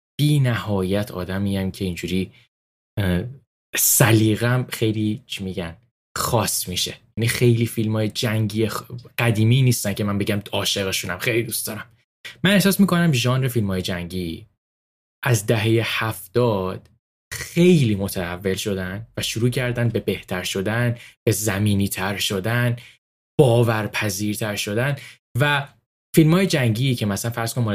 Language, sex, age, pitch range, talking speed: Persian, male, 10-29, 100-120 Hz, 125 wpm